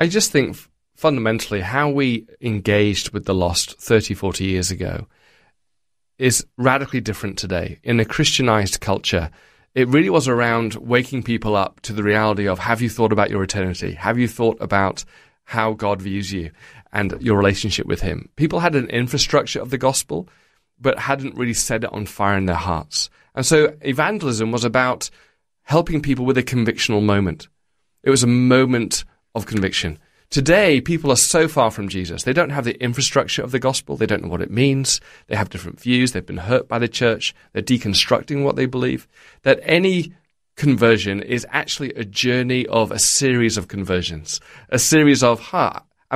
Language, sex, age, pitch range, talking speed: English, male, 30-49, 100-140 Hz, 180 wpm